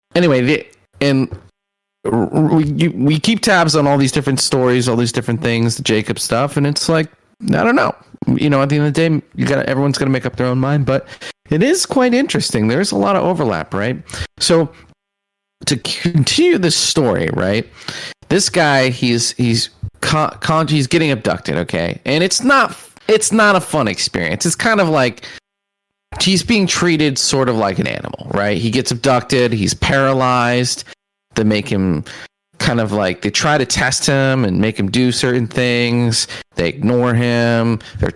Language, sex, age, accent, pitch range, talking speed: English, male, 30-49, American, 115-160 Hz, 185 wpm